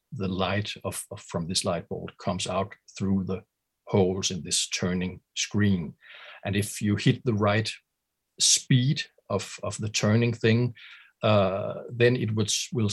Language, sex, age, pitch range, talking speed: Swedish, male, 50-69, 95-115 Hz, 160 wpm